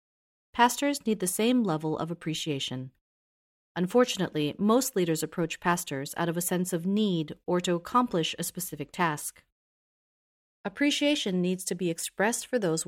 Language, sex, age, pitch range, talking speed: English, female, 30-49, 155-220 Hz, 145 wpm